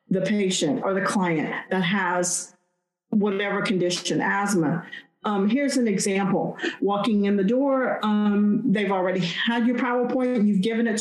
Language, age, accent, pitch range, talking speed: English, 40-59, American, 195-255 Hz, 155 wpm